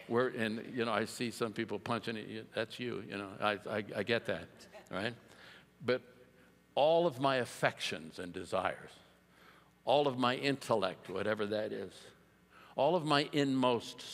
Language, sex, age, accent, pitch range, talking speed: English, male, 60-79, American, 105-140 Hz, 155 wpm